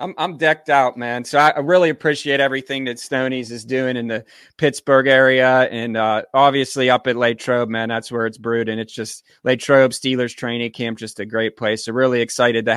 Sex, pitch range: male, 120-140 Hz